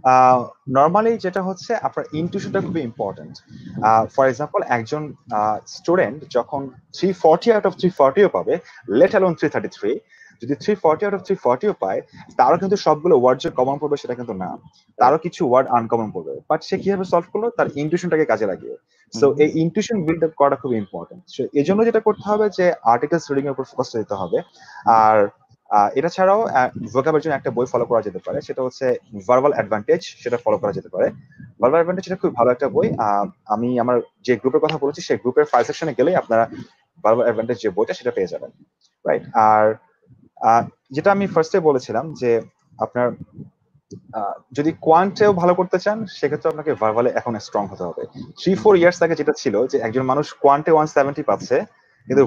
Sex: male